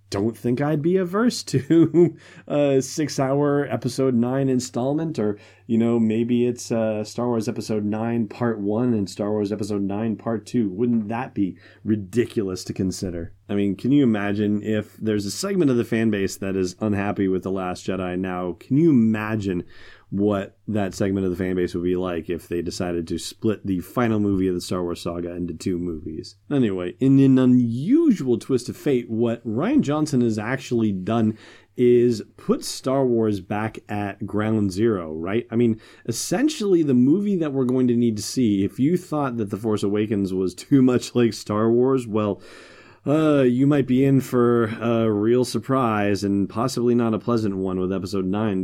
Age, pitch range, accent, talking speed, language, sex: 30-49, 100-125 Hz, American, 190 wpm, English, male